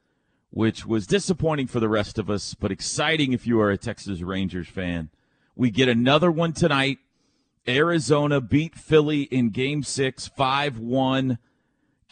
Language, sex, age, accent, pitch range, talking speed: English, male, 40-59, American, 105-150 Hz, 145 wpm